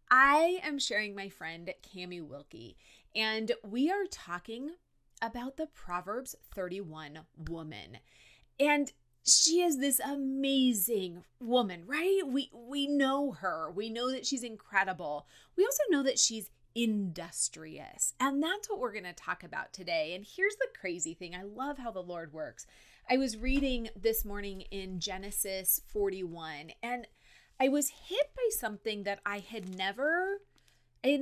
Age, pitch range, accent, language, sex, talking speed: 30-49, 185-280 Hz, American, English, female, 150 wpm